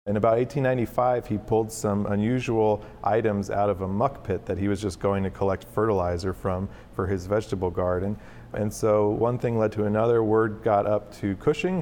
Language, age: English, 40-59